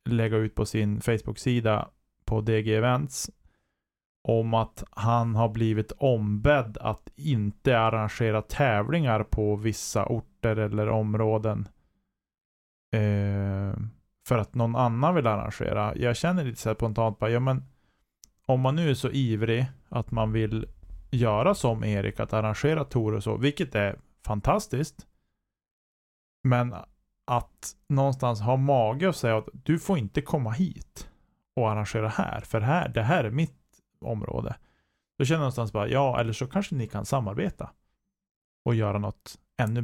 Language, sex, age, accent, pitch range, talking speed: Swedish, male, 20-39, Norwegian, 105-130 Hz, 150 wpm